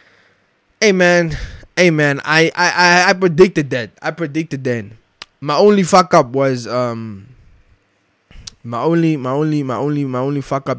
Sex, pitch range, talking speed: male, 120-160 Hz, 160 wpm